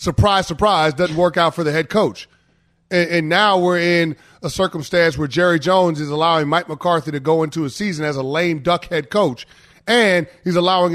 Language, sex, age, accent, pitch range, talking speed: English, male, 30-49, American, 170-215 Hz, 205 wpm